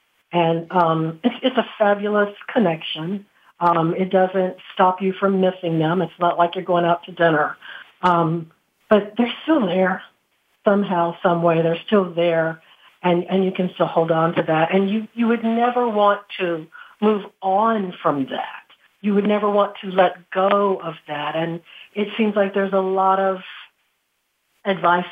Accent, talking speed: American, 170 wpm